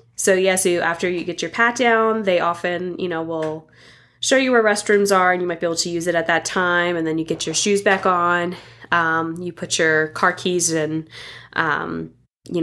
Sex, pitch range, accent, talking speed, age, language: female, 155-185 Hz, American, 230 wpm, 10-29, English